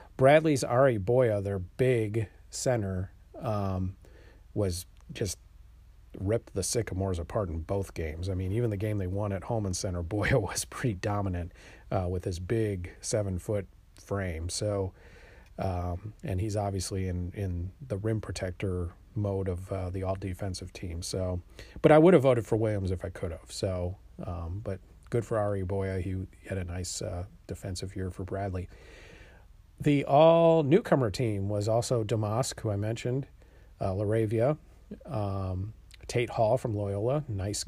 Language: English